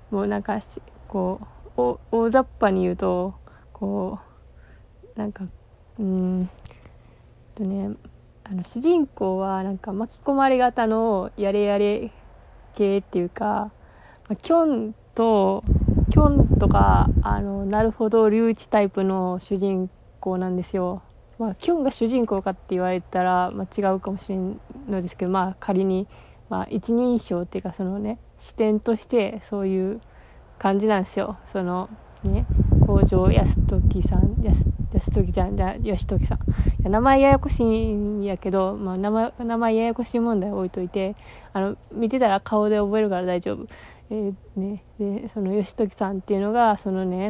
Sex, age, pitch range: female, 20-39, 185-215 Hz